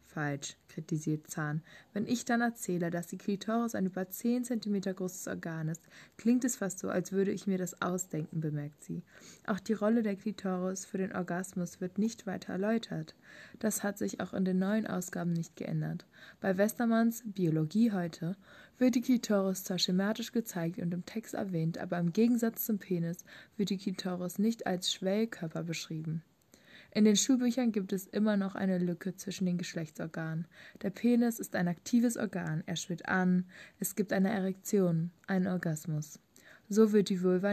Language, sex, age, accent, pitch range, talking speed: German, female, 20-39, German, 175-215 Hz, 175 wpm